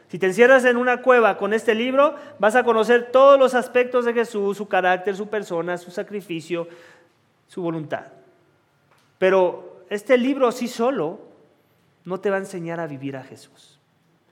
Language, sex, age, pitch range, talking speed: English, male, 40-59, 150-220 Hz, 165 wpm